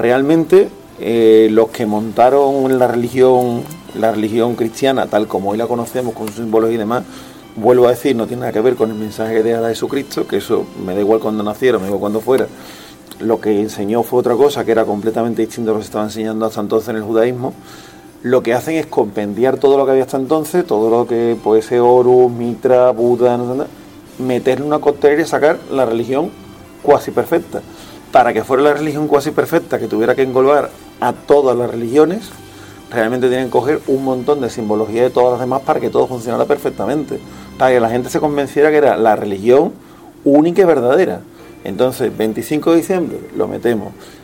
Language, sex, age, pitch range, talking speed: Spanish, male, 30-49, 110-135 Hz, 200 wpm